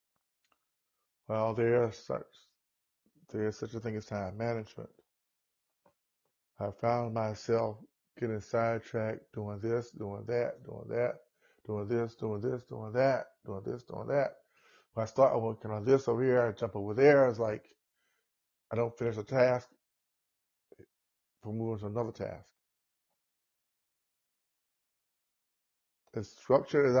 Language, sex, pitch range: English, male, 110-125 Hz